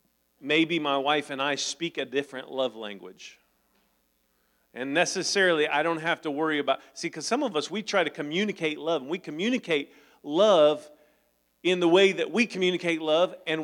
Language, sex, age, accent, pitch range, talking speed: English, male, 40-59, American, 150-210 Hz, 175 wpm